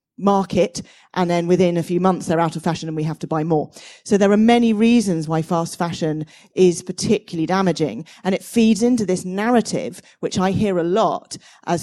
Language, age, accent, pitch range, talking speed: English, 40-59, British, 165-205 Hz, 205 wpm